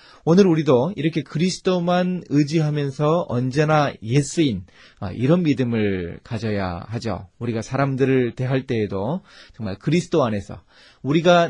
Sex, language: male, Korean